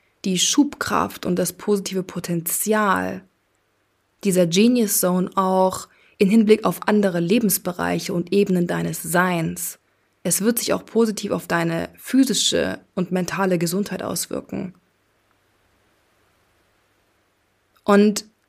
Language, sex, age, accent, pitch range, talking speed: German, female, 20-39, German, 170-215 Hz, 105 wpm